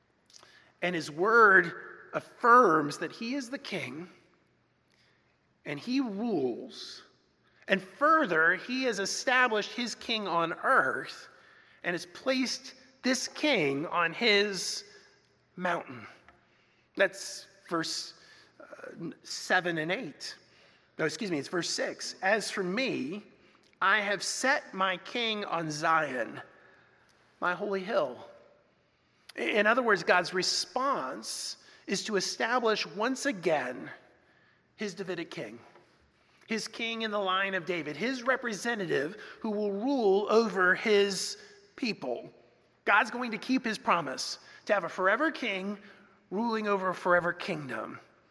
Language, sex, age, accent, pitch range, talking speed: English, male, 30-49, American, 185-245 Hz, 120 wpm